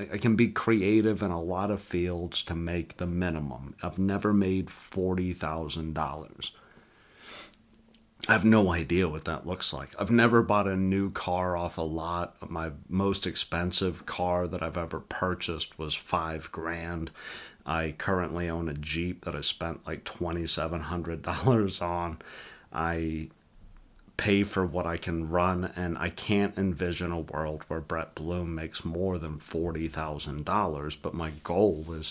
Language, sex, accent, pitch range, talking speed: English, male, American, 80-100 Hz, 150 wpm